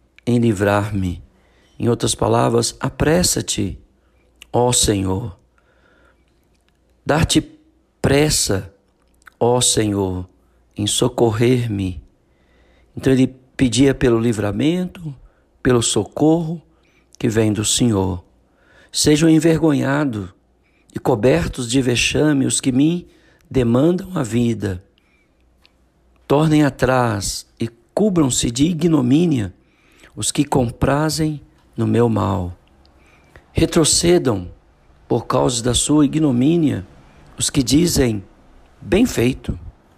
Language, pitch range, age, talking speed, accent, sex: Portuguese, 90-135 Hz, 60-79, 90 wpm, Brazilian, male